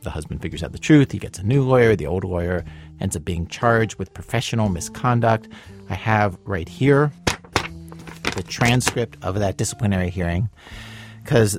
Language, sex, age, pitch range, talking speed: English, male, 40-59, 95-125 Hz, 165 wpm